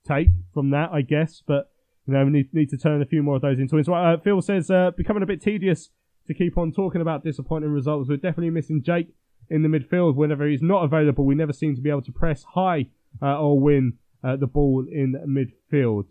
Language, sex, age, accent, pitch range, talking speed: English, male, 20-39, British, 135-165 Hz, 225 wpm